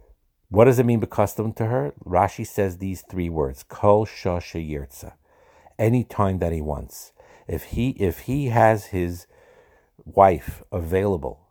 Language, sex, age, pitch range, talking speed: English, male, 60-79, 80-105 Hz, 145 wpm